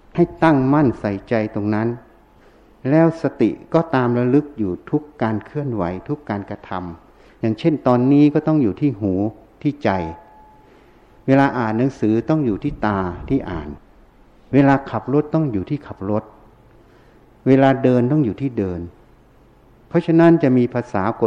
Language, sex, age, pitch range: Thai, male, 60-79, 105-140 Hz